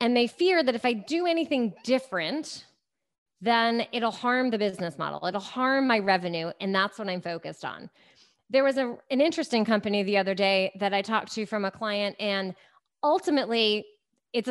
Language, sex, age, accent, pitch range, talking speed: English, female, 30-49, American, 195-275 Hz, 180 wpm